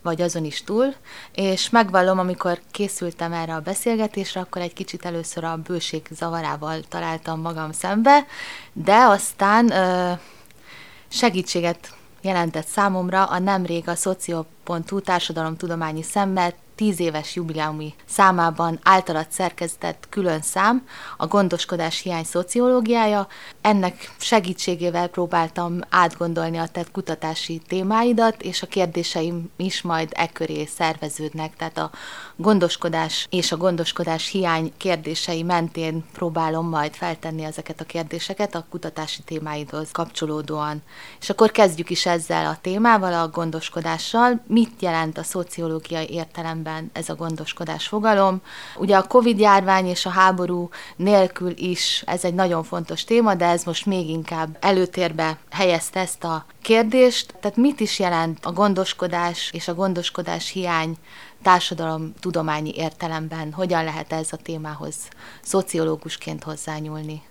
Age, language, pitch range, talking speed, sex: 30-49, Hungarian, 160-190 Hz, 125 wpm, female